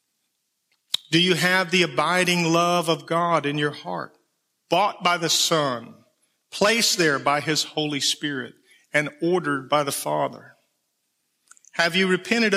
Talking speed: 140 wpm